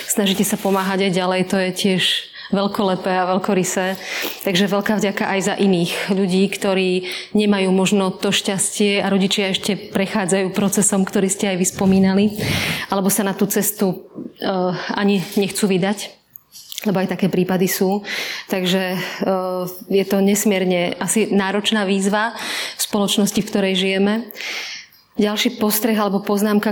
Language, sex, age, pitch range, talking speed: Slovak, female, 30-49, 190-210 Hz, 140 wpm